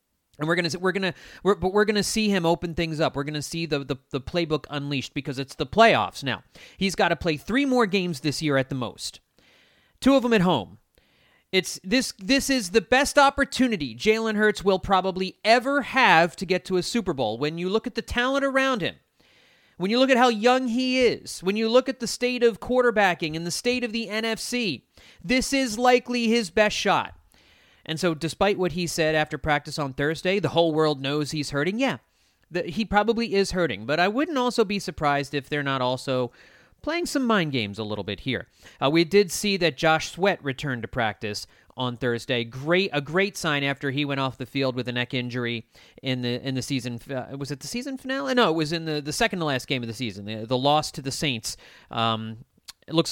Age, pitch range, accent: 30-49, 135-220 Hz, American